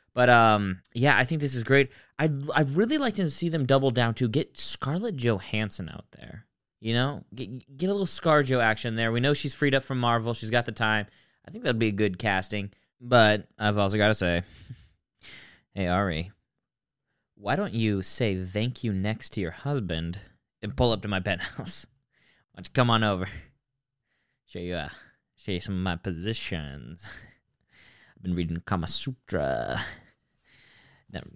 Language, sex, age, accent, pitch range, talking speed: English, male, 20-39, American, 95-135 Hz, 185 wpm